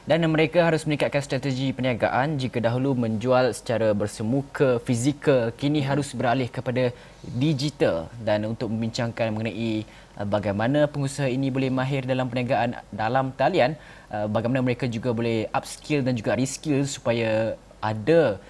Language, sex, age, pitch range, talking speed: Malay, male, 20-39, 110-135 Hz, 130 wpm